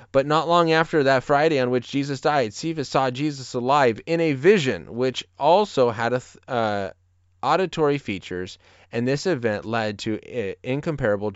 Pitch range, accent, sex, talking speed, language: 100-140 Hz, American, male, 160 wpm, English